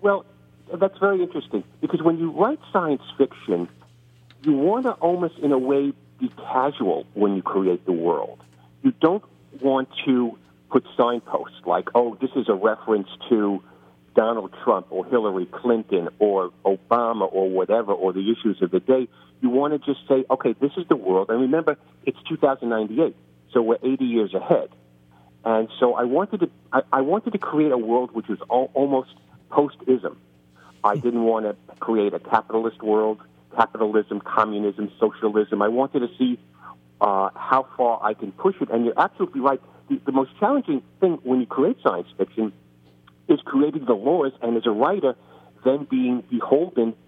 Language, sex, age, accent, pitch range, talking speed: English, male, 50-69, American, 95-135 Hz, 165 wpm